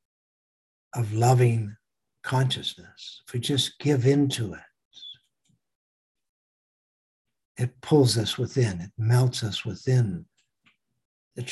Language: English